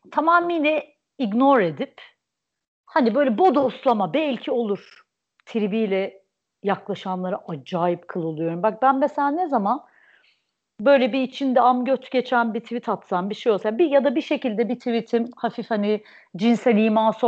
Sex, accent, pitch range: female, native, 190-255 Hz